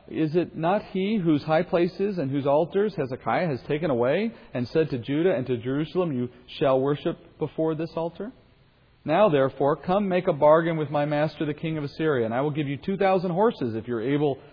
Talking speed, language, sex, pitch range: 205 wpm, English, male, 130-175 Hz